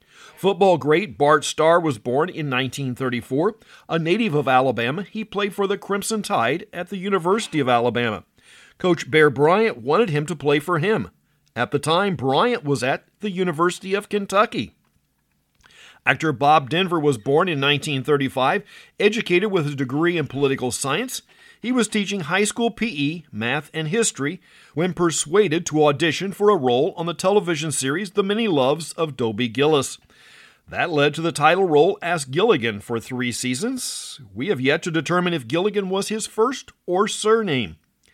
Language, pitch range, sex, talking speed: English, 135-195 Hz, male, 165 wpm